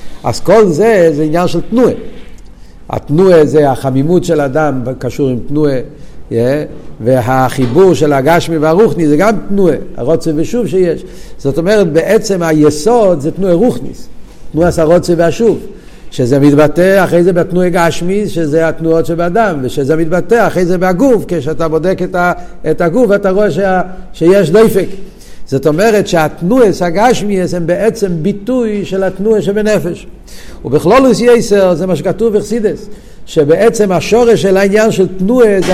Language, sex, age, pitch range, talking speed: Hebrew, male, 50-69, 165-205 Hz, 145 wpm